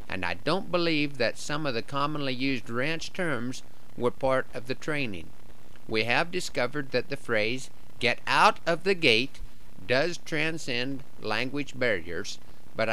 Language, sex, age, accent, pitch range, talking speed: English, male, 50-69, American, 110-140 Hz, 155 wpm